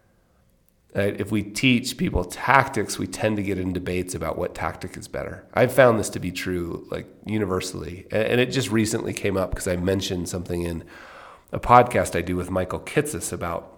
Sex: male